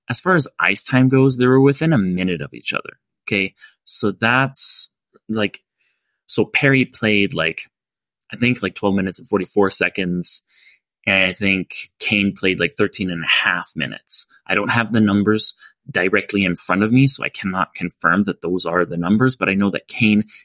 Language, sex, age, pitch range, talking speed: English, male, 20-39, 95-125 Hz, 190 wpm